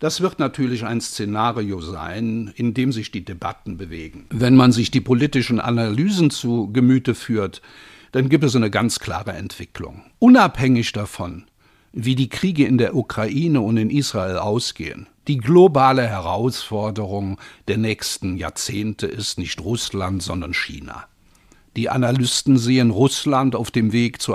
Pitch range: 100-145 Hz